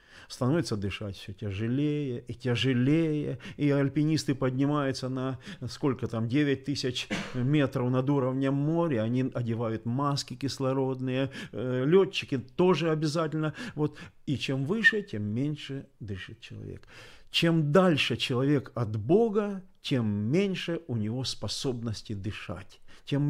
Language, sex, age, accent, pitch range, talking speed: Ukrainian, male, 40-59, native, 120-150 Hz, 110 wpm